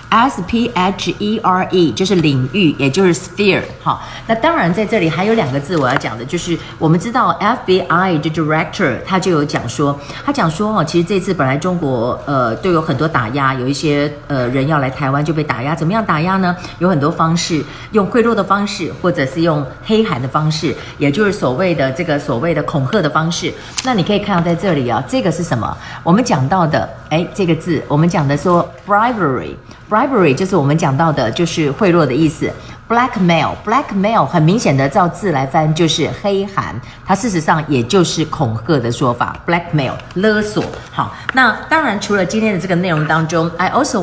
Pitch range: 145-190 Hz